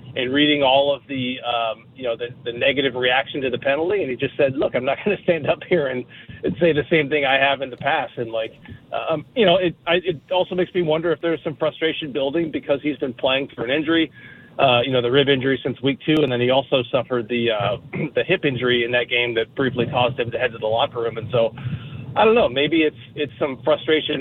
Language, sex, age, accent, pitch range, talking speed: English, male, 40-59, American, 125-155 Hz, 260 wpm